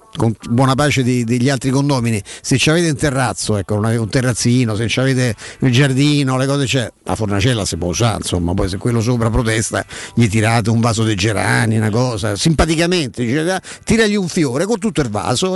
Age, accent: 50-69, native